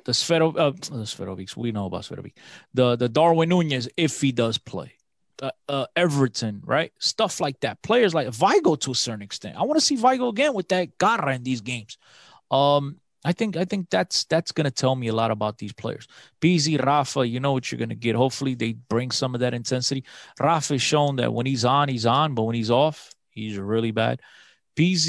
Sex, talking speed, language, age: male, 210 wpm, English, 30-49